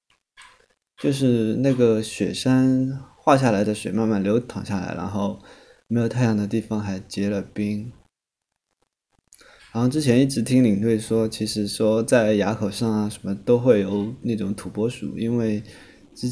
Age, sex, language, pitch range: 20-39, male, Chinese, 100-115 Hz